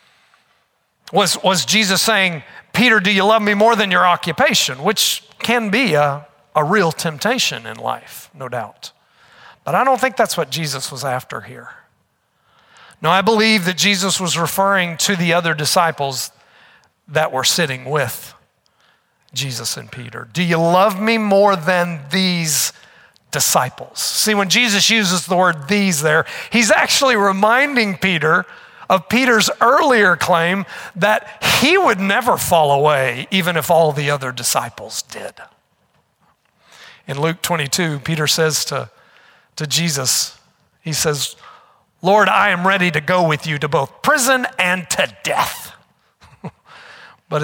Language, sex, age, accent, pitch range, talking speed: English, male, 50-69, American, 150-205 Hz, 145 wpm